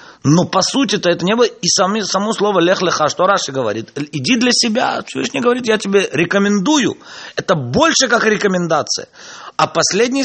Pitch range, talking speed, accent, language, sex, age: 160-250 Hz, 170 wpm, native, Russian, male, 30-49